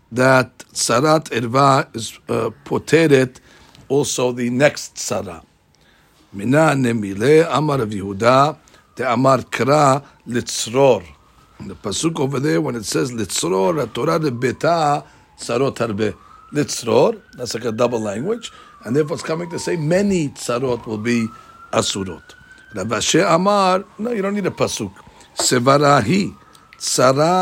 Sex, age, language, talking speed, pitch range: male, 60-79, English, 130 wpm, 125-160 Hz